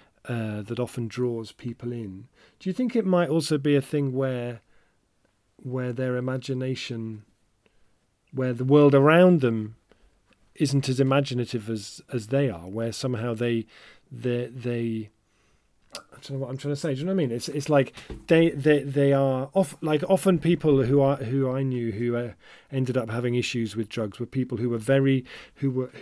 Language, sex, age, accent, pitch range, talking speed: English, male, 40-59, British, 120-140 Hz, 185 wpm